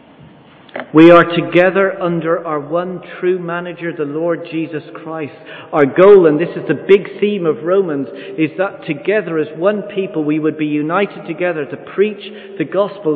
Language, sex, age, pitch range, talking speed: English, male, 40-59, 150-190 Hz, 170 wpm